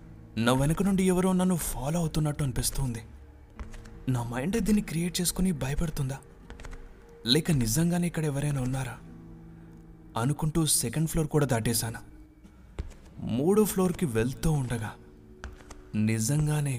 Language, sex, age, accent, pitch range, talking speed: Telugu, male, 30-49, native, 105-130 Hz, 105 wpm